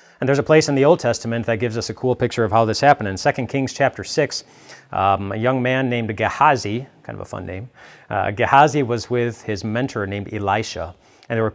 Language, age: English, 30-49